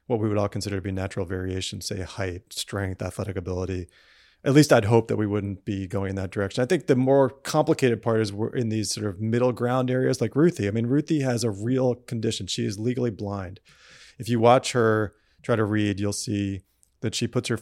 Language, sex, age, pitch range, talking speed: English, male, 30-49, 105-125 Hz, 230 wpm